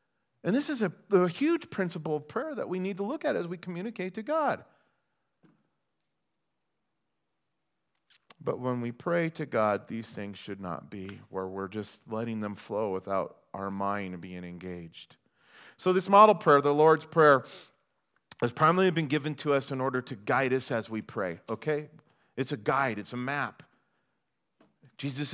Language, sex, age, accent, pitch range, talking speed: English, male, 40-59, American, 120-160 Hz, 170 wpm